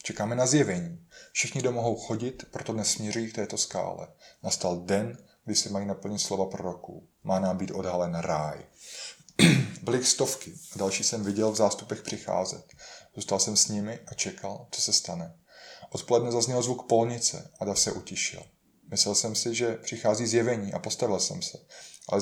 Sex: male